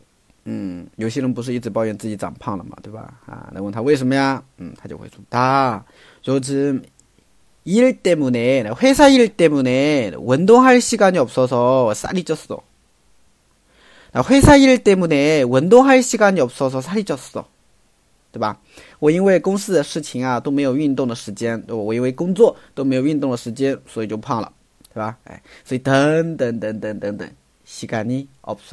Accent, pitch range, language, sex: Korean, 110-145 Hz, Chinese, male